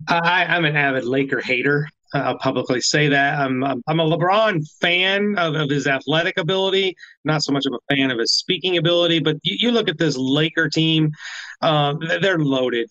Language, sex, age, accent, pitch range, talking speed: English, male, 30-49, American, 145-175 Hz, 200 wpm